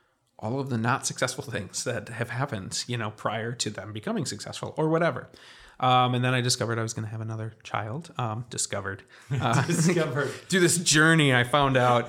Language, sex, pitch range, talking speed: English, male, 110-130 Hz, 200 wpm